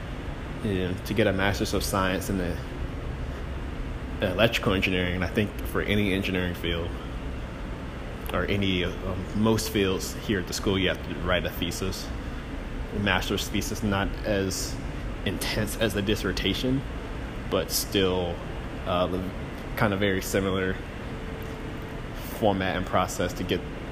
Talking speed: 135 wpm